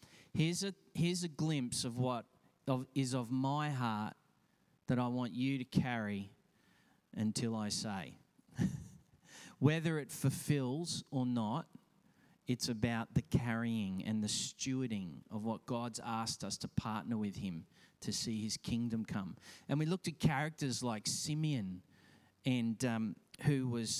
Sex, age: male, 40-59